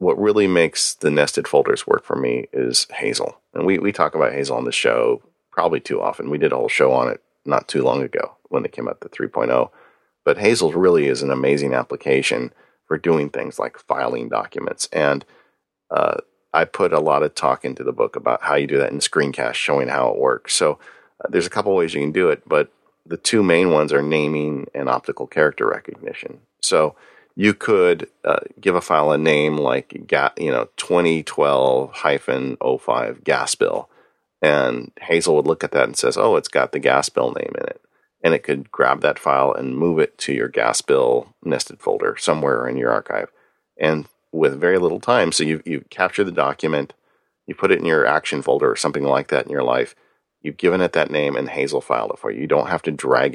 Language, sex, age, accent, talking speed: English, male, 40-59, American, 220 wpm